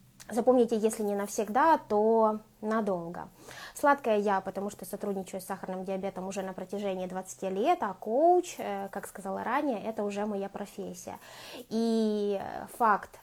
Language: Ukrainian